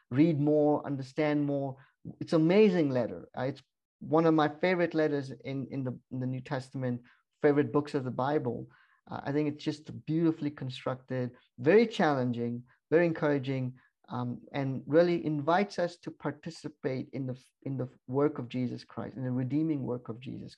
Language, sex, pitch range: English, male, 130-155 Hz